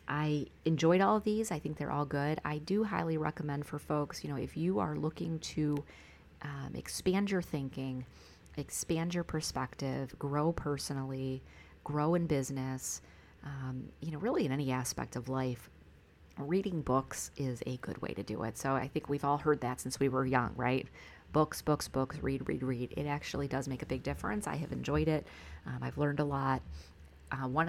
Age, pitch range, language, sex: 30-49, 125-150 Hz, English, female